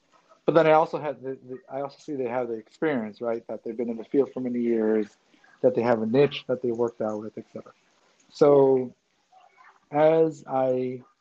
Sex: male